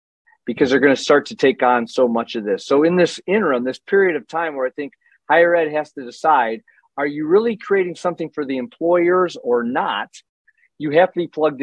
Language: English